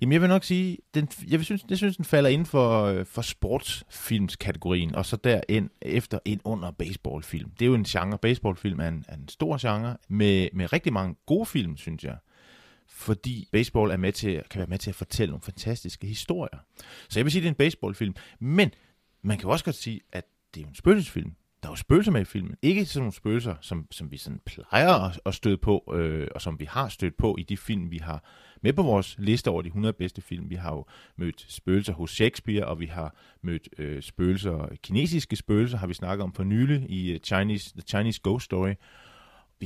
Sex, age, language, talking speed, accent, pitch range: male, 30-49, Danish, 220 wpm, native, 90-120 Hz